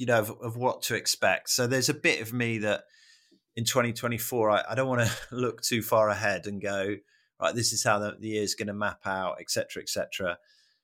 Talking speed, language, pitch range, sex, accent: 240 wpm, English, 105-130 Hz, male, British